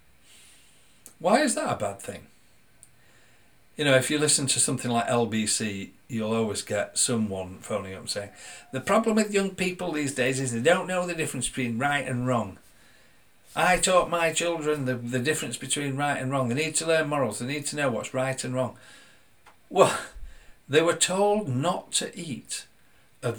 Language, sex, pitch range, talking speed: English, male, 105-135 Hz, 185 wpm